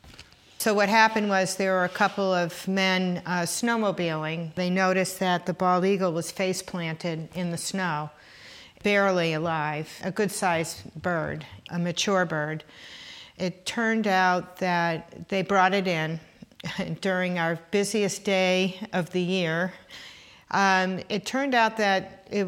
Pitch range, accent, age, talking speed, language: 170-190 Hz, American, 50-69, 140 wpm, English